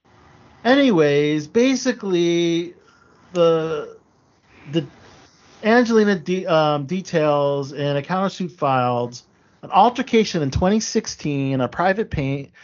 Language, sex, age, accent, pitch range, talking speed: English, male, 40-59, American, 130-200 Hz, 95 wpm